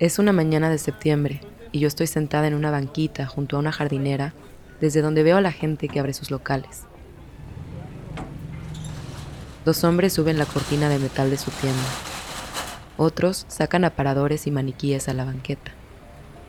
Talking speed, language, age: 160 wpm, Spanish, 20-39